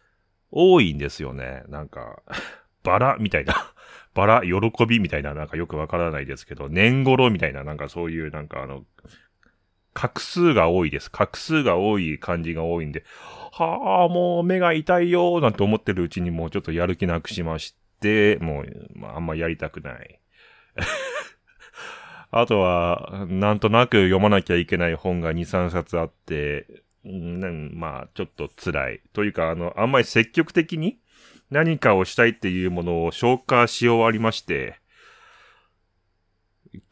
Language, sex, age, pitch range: Japanese, male, 30-49, 85-120 Hz